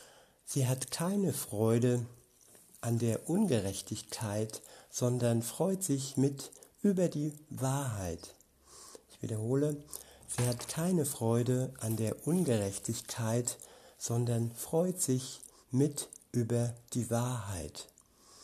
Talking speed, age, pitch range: 100 wpm, 60-79, 115-135 Hz